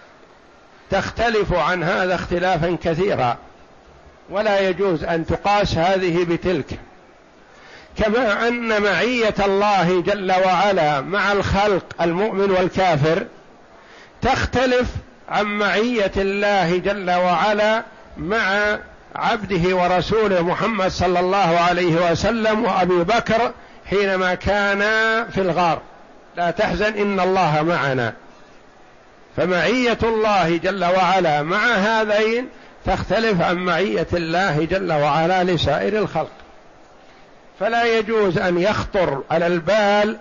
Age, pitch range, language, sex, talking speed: 60-79, 175-210 Hz, Arabic, male, 100 wpm